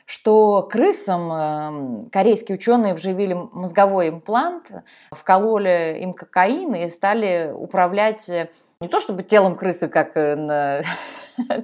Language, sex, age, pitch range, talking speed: Russian, female, 20-39, 180-225 Hz, 105 wpm